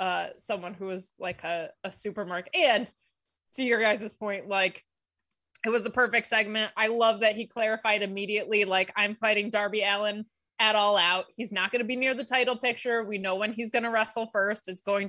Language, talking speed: English, 205 wpm